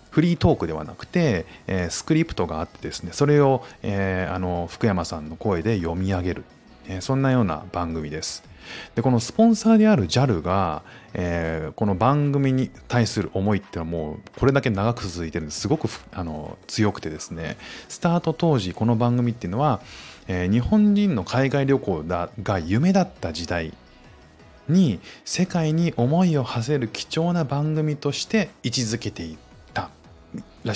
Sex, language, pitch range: male, Japanese, 90-140 Hz